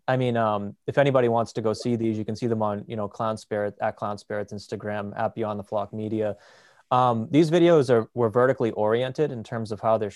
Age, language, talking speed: 20-39, English, 235 wpm